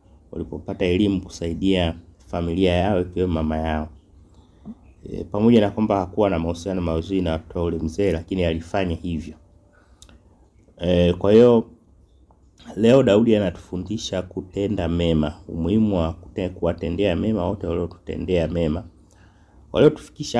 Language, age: Swahili, 30-49